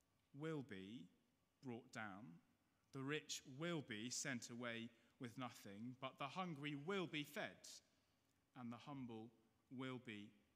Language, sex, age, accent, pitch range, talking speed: English, male, 30-49, British, 120-155 Hz, 130 wpm